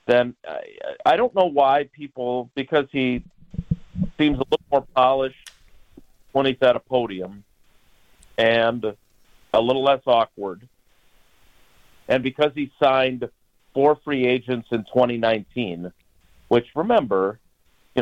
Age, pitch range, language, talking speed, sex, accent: 50-69, 110-150 Hz, English, 115 wpm, male, American